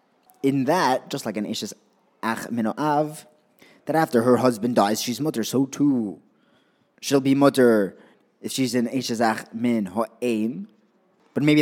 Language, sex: English, male